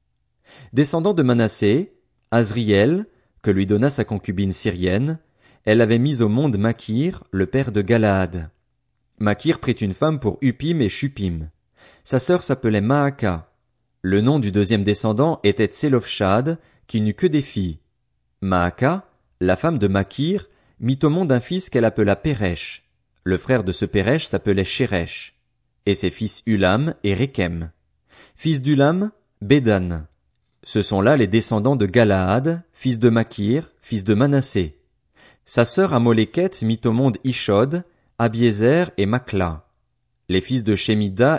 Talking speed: 145 wpm